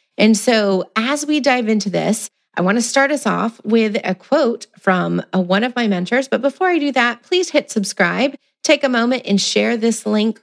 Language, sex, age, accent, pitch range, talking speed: English, female, 30-49, American, 190-245 Hz, 215 wpm